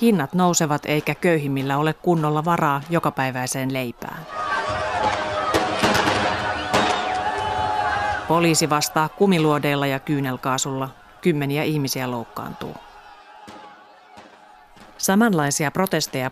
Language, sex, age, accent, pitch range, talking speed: Finnish, female, 30-49, native, 135-170 Hz, 70 wpm